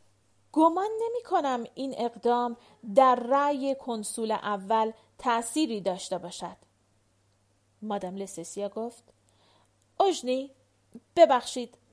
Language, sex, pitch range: Persian, female, 220-290 Hz